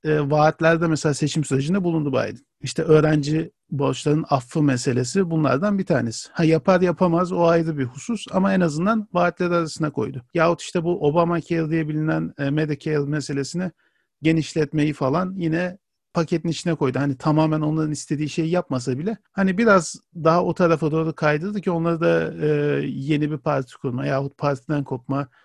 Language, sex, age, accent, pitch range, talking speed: Turkish, male, 50-69, native, 150-180 Hz, 160 wpm